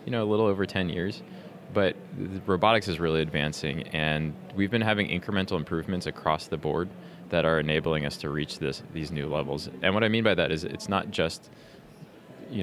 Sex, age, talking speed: male, 20-39, 200 wpm